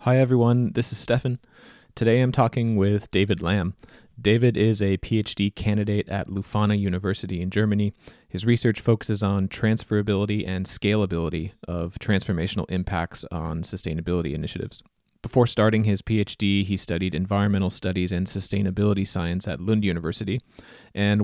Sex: male